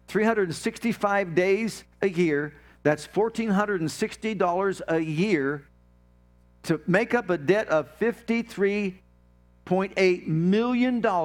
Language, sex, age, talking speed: English, male, 50-69, 85 wpm